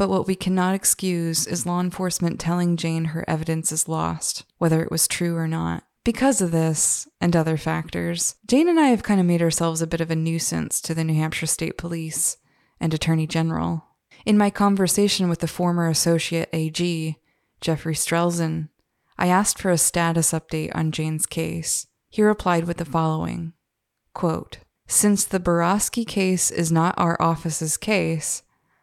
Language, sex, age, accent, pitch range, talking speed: English, female, 20-39, American, 160-180 Hz, 170 wpm